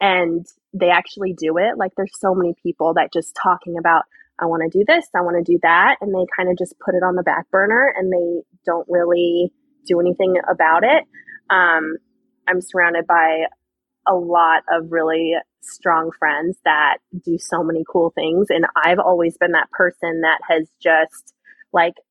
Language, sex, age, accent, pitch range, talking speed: English, female, 20-39, American, 170-215 Hz, 185 wpm